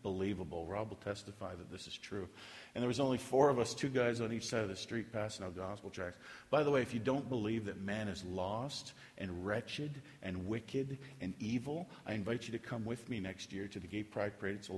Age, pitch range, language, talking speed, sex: 50-69, 100-120 Hz, English, 240 wpm, male